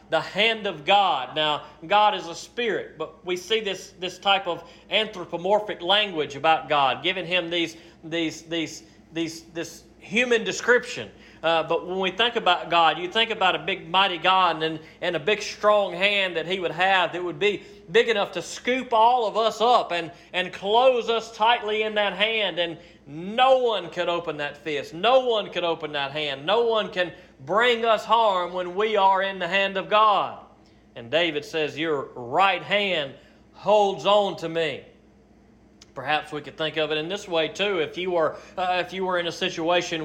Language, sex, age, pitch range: English, male, 40-59, 165-210 Hz